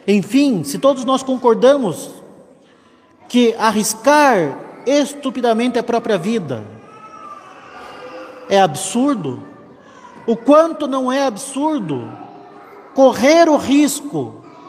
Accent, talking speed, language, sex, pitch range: Brazilian, 85 wpm, Portuguese, male, 230-295 Hz